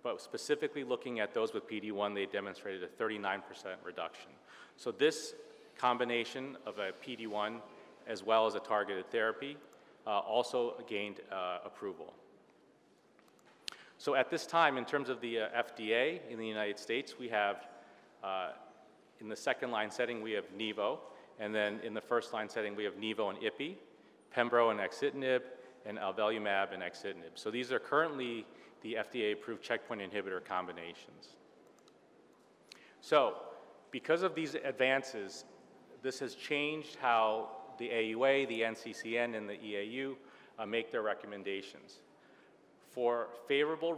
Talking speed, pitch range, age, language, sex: 140 wpm, 110-145 Hz, 40-59, English, male